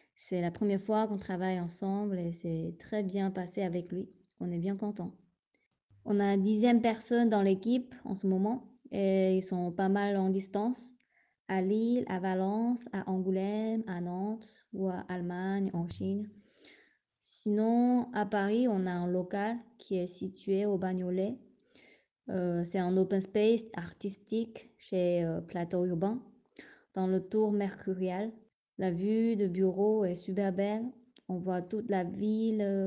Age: 20-39